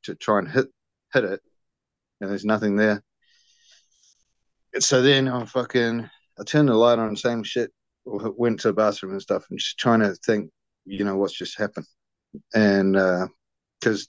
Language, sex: English, male